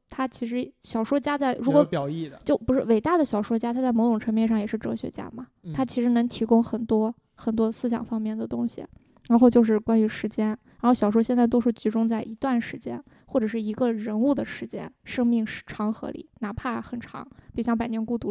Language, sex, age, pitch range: Chinese, female, 20-39, 220-250 Hz